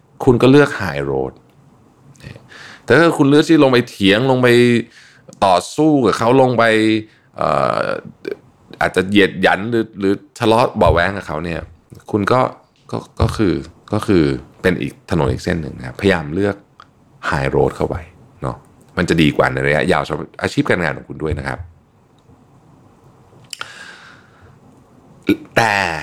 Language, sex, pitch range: Thai, male, 75-120 Hz